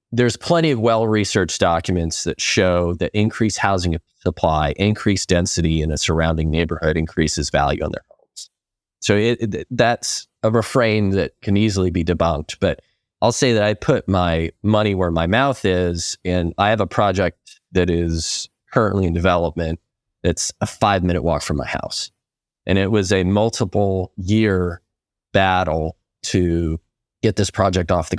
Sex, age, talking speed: male, 30-49, 160 wpm